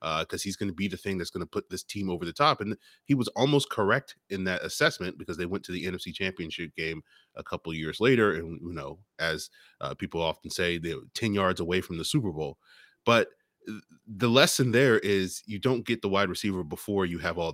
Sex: male